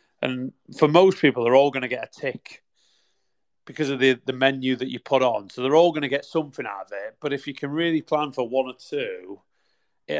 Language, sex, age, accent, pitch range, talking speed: English, male, 30-49, British, 125-150 Hz, 240 wpm